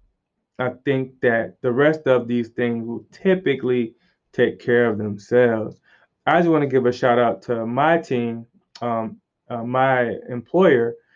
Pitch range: 115-135 Hz